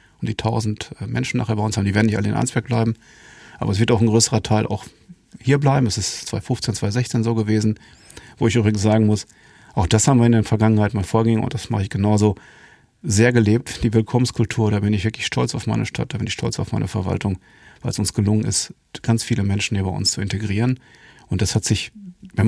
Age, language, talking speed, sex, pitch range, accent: 40-59, German, 230 wpm, male, 100-115 Hz, German